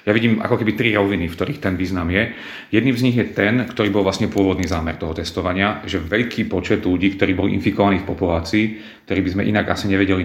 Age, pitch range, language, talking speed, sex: 40-59, 95-110 Hz, Slovak, 225 wpm, male